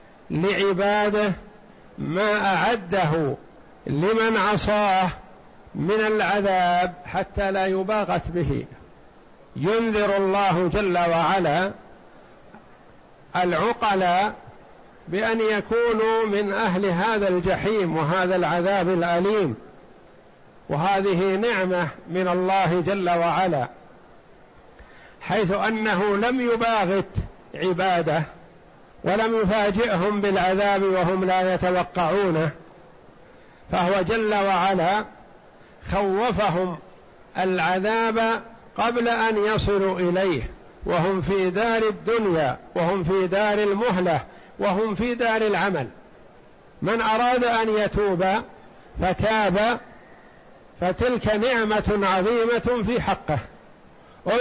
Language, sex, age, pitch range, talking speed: Arabic, male, 60-79, 185-220 Hz, 80 wpm